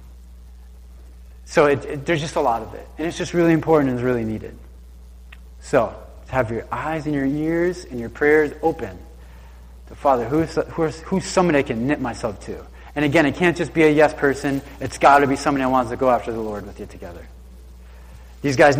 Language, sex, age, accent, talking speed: English, male, 30-49, American, 215 wpm